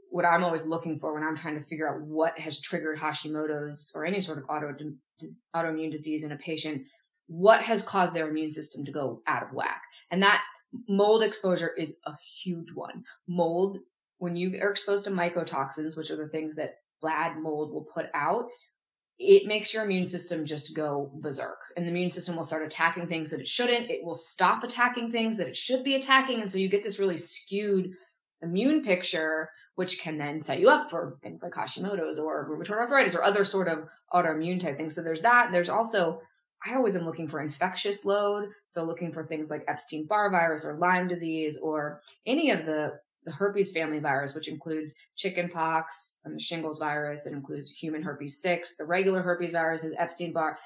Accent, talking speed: American, 195 wpm